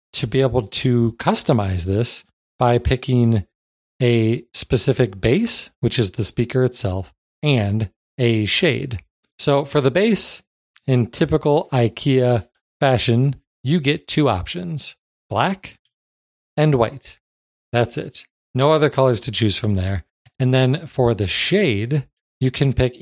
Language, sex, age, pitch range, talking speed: English, male, 40-59, 110-145 Hz, 135 wpm